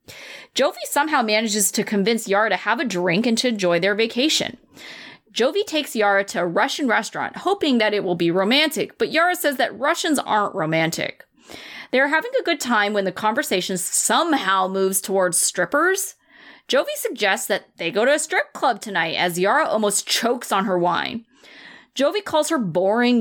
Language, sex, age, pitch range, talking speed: English, female, 30-49, 195-290 Hz, 180 wpm